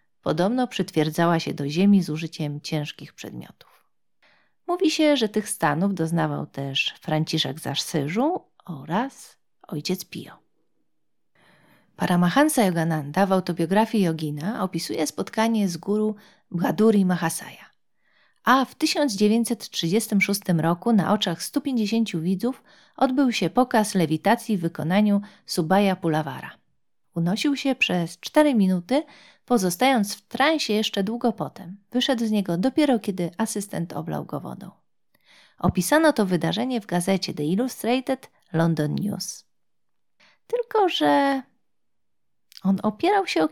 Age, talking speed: 40-59, 115 wpm